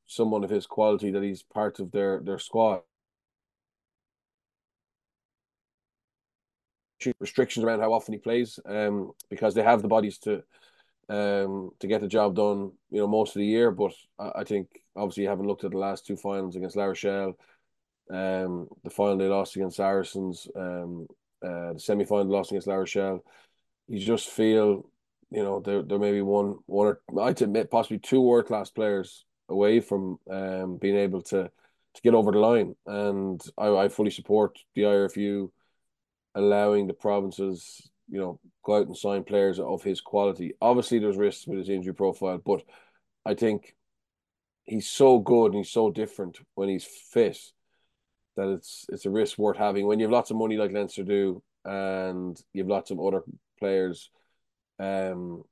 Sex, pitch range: male, 95-105 Hz